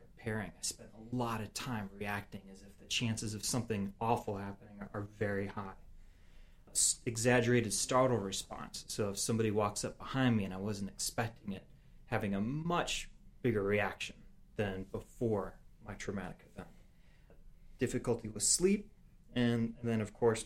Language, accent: English, American